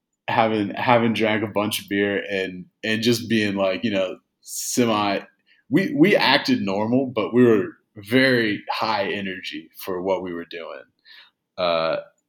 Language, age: English, 30-49